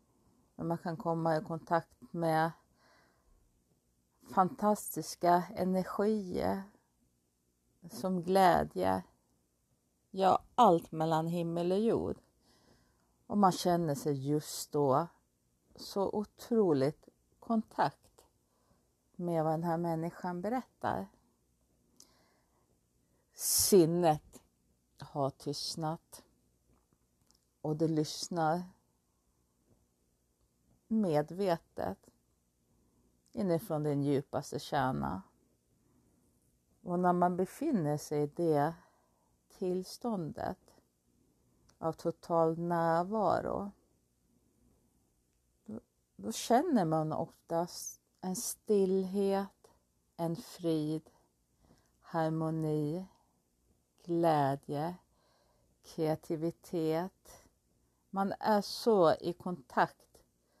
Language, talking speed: Swedish, 70 wpm